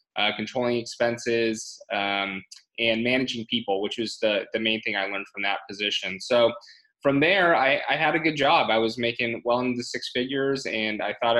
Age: 20-39